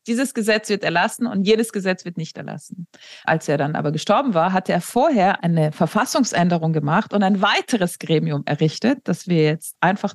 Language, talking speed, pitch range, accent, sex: German, 185 wpm, 175-235 Hz, German, female